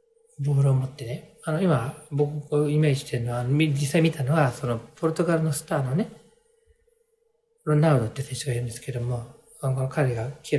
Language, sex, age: Japanese, male, 40-59